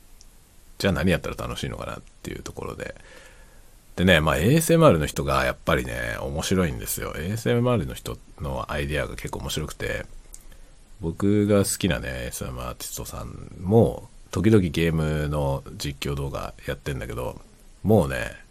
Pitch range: 75-110 Hz